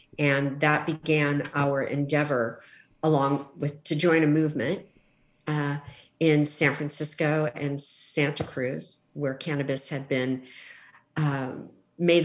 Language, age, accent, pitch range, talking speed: English, 50-69, American, 145-170 Hz, 120 wpm